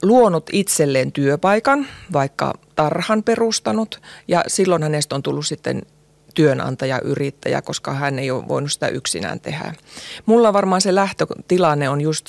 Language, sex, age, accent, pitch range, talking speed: Finnish, female, 30-49, native, 145-180 Hz, 135 wpm